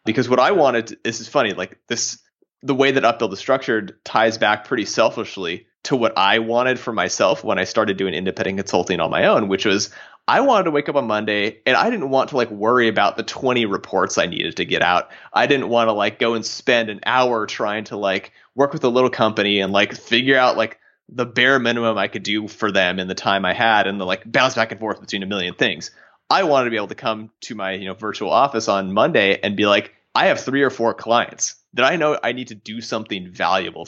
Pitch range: 100-125 Hz